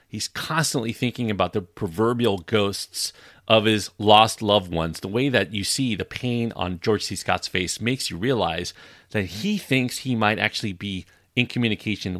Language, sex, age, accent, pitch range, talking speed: English, male, 40-59, American, 95-135 Hz, 175 wpm